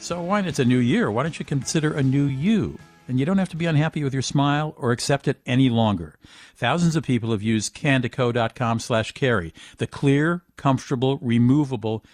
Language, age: English, 50-69